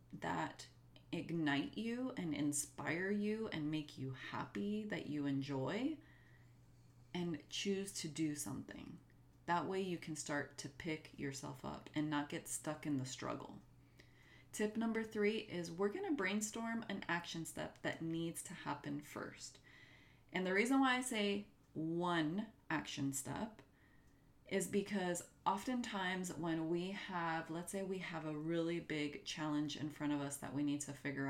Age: 30-49